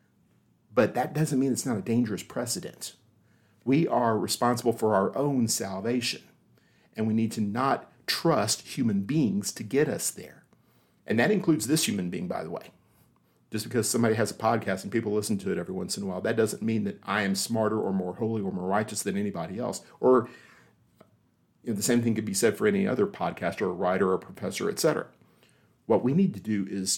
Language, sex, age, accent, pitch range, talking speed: English, male, 50-69, American, 105-135 Hz, 205 wpm